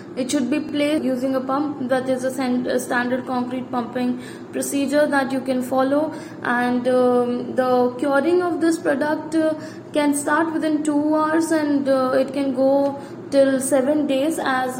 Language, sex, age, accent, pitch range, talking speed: English, female, 20-39, Indian, 260-295 Hz, 160 wpm